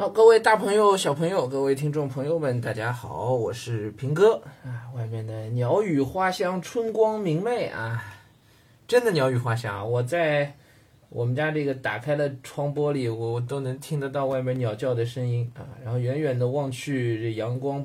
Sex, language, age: male, Chinese, 20-39